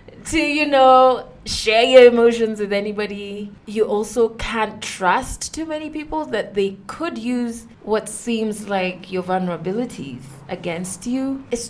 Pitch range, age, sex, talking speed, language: 185-230 Hz, 20-39, female, 140 wpm, English